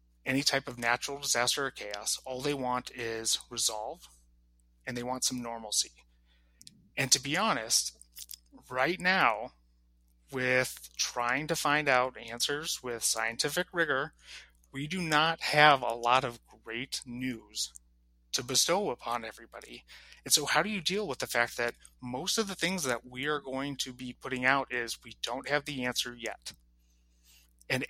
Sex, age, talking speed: male, 30-49, 160 wpm